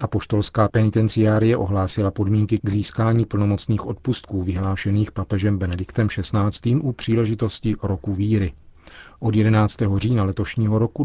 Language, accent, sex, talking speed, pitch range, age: Czech, native, male, 115 wpm, 100-115 Hz, 40-59